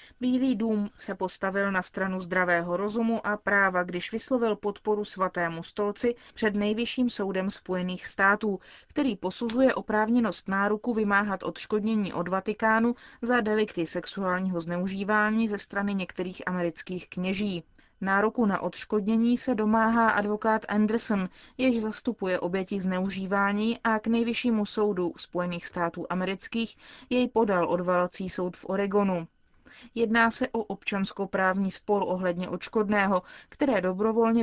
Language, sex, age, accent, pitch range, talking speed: Czech, female, 30-49, native, 185-220 Hz, 120 wpm